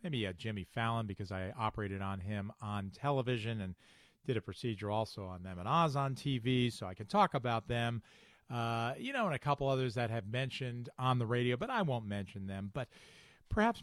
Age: 40-59